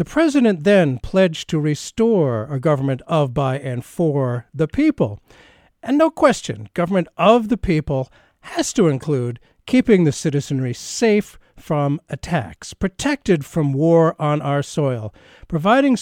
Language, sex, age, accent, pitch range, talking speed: English, male, 50-69, American, 130-190 Hz, 140 wpm